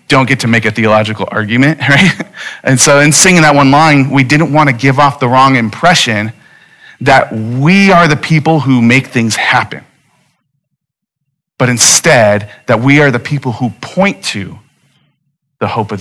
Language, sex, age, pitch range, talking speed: English, male, 40-59, 130-160 Hz, 170 wpm